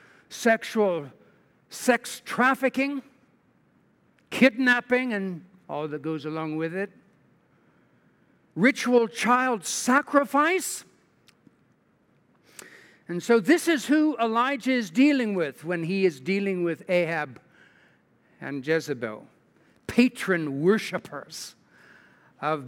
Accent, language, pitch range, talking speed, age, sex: American, English, 180-250 Hz, 90 wpm, 60-79, male